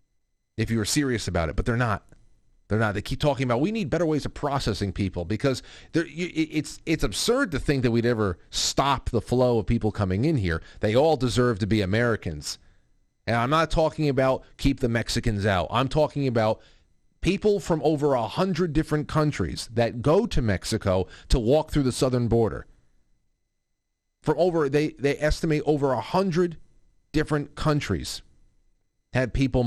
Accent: American